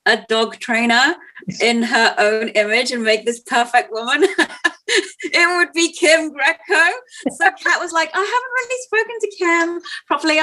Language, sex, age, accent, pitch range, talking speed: English, female, 30-49, British, 220-340 Hz, 160 wpm